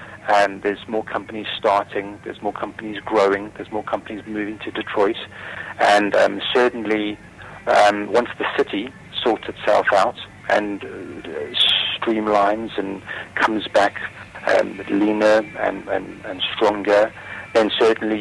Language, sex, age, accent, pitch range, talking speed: English, male, 40-59, British, 100-110 Hz, 125 wpm